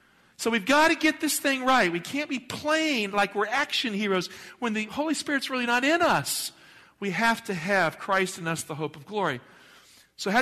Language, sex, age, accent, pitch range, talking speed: English, male, 50-69, American, 155-210 Hz, 215 wpm